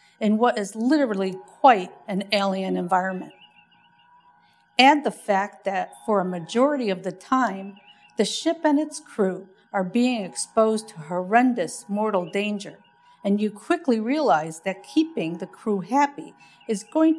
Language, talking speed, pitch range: English, 145 wpm, 180-240 Hz